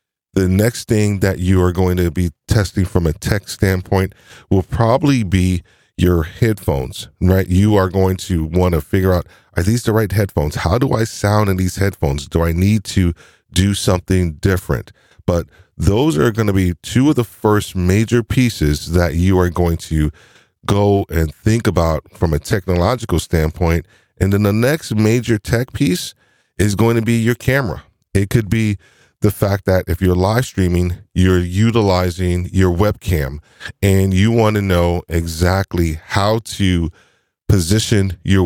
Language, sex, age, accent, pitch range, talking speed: English, male, 40-59, American, 90-105 Hz, 170 wpm